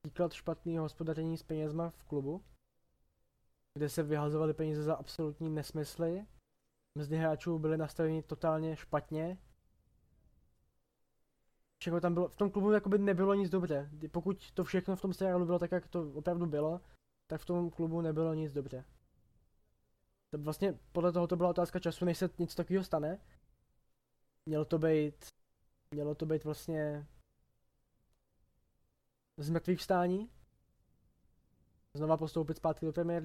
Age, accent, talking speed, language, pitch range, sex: 20-39, native, 135 wpm, Czech, 150-170 Hz, male